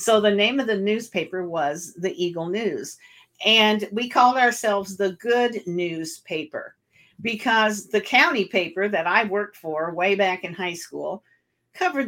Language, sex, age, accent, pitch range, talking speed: English, female, 50-69, American, 170-215 Hz, 160 wpm